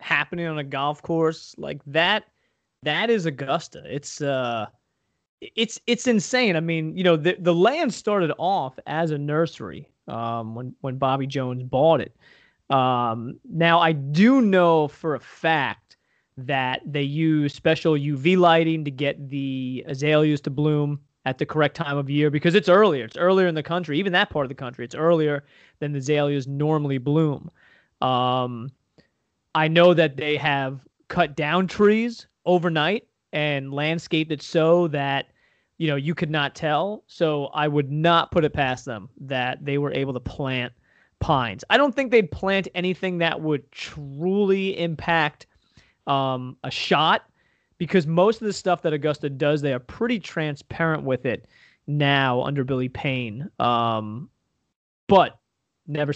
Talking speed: 160 wpm